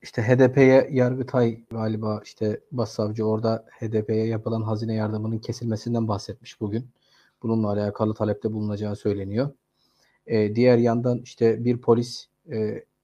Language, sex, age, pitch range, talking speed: Turkish, male, 30-49, 110-130 Hz, 125 wpm